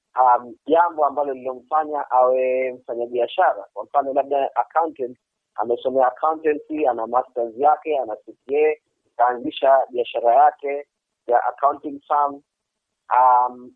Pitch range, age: 130-170 Hz, 30-49